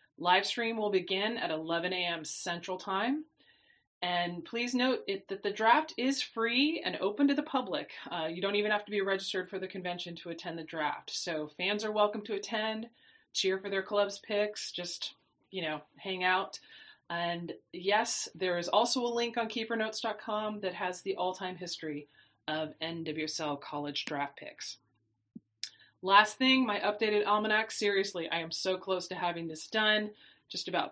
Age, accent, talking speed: 30-49, American, 175 wpm